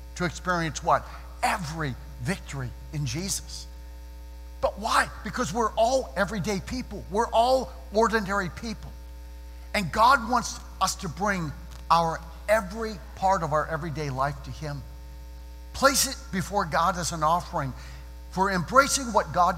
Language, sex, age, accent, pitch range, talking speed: English, male, 60-79, American, 130-210 Hz, 135 wpm